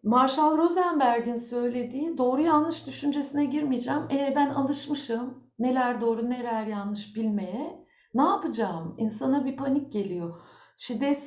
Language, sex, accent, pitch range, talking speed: Turkish, female, native, 200-275 Hz, 115 wpm